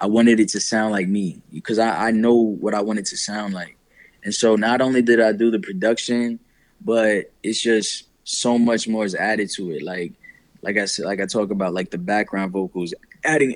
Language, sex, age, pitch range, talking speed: English, male, 20-39, 100-115 Hz, 220 wpm